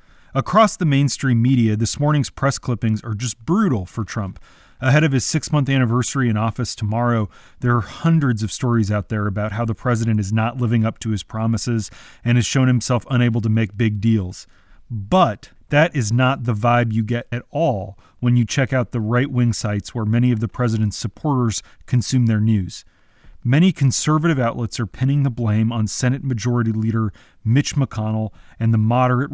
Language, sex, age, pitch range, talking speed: English, male, 30-49, 110-130 Hz, 185 wpm